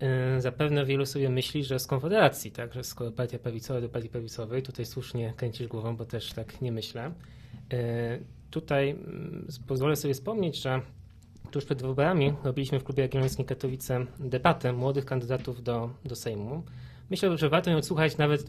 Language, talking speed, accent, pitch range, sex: Polish, 170 wpm, native, 120-150 Hz, male